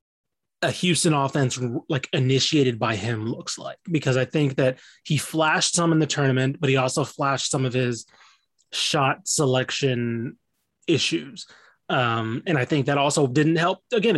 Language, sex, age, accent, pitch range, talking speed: English, male, 20-39, American, 125-155 Hz, 160 wpm